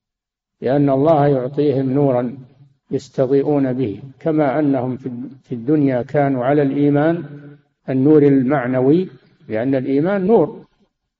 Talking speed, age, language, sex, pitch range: 95 wpm, 50-69, Arabic, male, 130-150 Hz